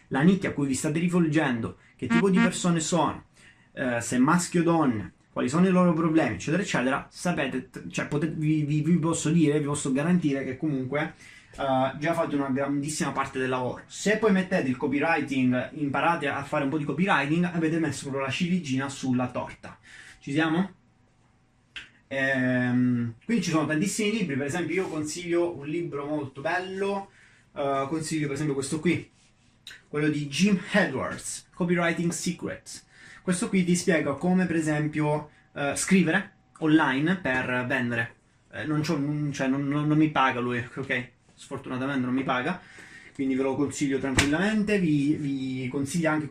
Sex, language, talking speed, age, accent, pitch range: male, Italian, 165 wpm, 20-39, native, 135-170 Hz